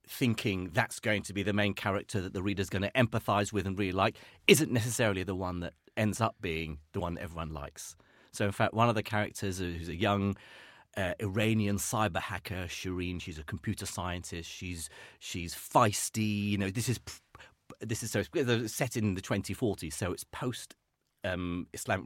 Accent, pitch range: British, 95-125 Hz